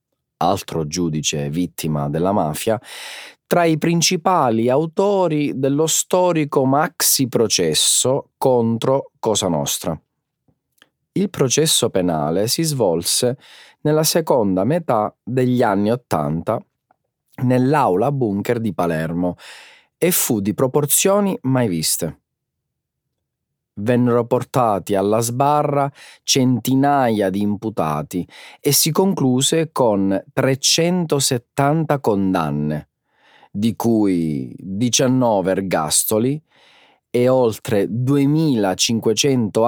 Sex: male